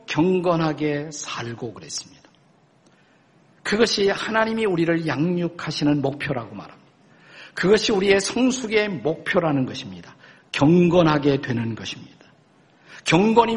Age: 50-69